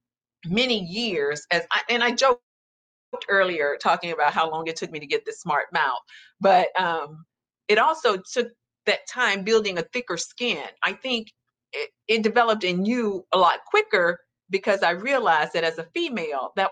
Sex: female